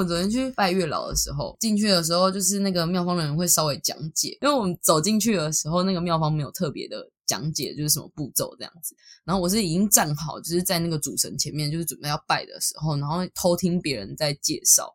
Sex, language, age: female, Chinese, 10-29